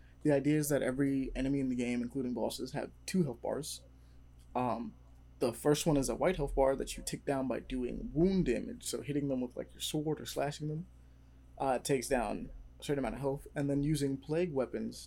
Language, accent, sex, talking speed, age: English, American, male, 220 wpm, 20-39